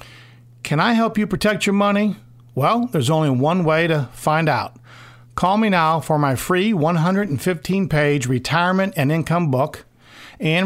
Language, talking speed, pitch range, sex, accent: English, 150 wpm, 130-180 Hz, male, American